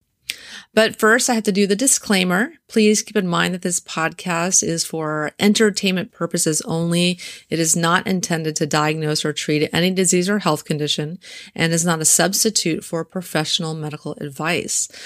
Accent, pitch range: American, 160-195 Hz